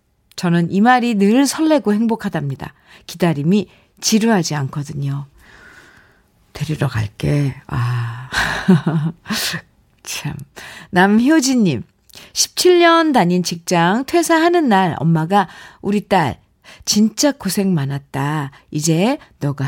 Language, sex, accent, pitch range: Korean, female, native, 165-245 Hz